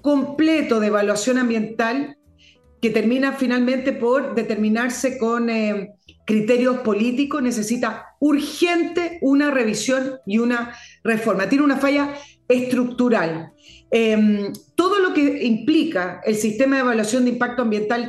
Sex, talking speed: female, 120 wpm